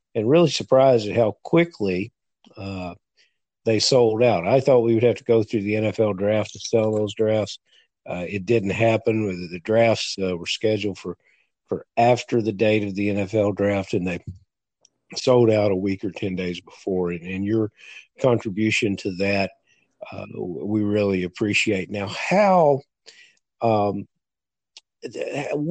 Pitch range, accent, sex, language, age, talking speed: 100-135 Hz, American, male, English, 50-69, 155 wpm